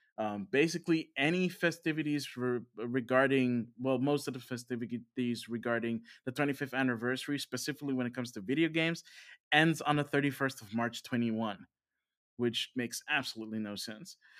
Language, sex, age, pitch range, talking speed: English, male, 20-39, 115-150 Hz, 140 wpm